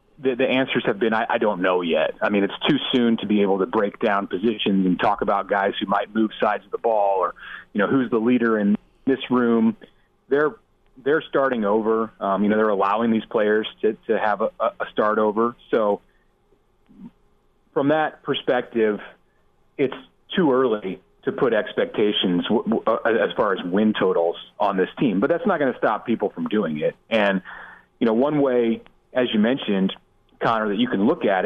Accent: American